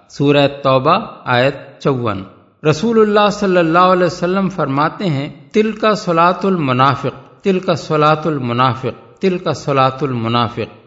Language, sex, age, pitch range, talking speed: Urdu, male, 50-69, 130-175 Hz, 135 wpm